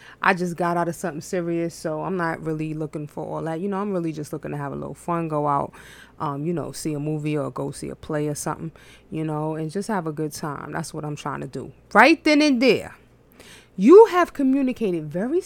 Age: 20-39